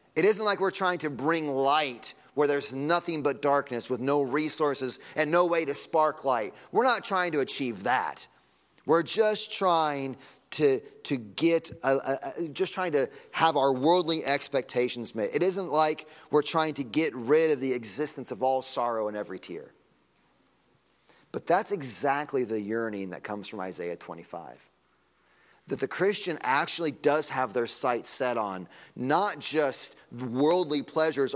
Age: 30-49